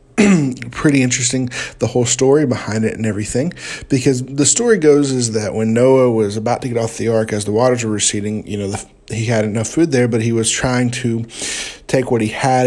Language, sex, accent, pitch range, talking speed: English, male, American, 115-135 Hz, 220 wpm